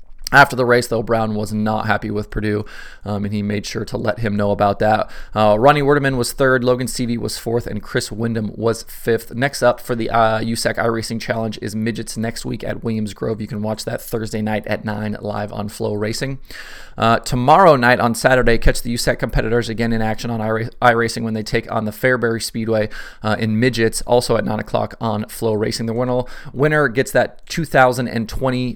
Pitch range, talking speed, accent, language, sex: 105-120 Hz, 205 wpm, American, English, male